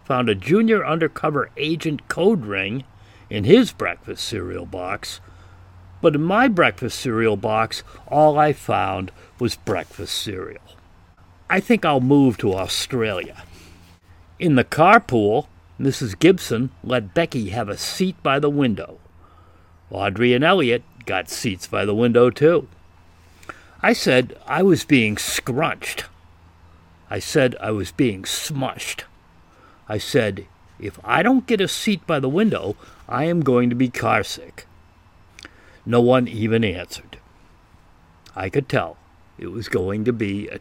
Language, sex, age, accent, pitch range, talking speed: English, male, 60-79, American, 90-130 Hz, 140 wpm